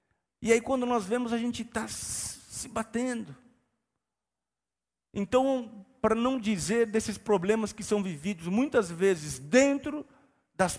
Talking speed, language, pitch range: 130 wpm, Portuguese, 130-220 Hz